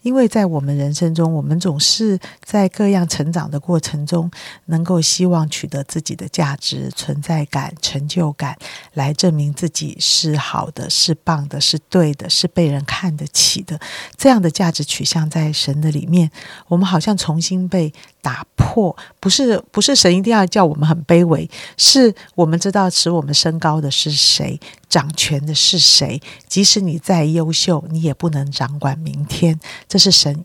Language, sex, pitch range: Chinese, female, 150-185 Hz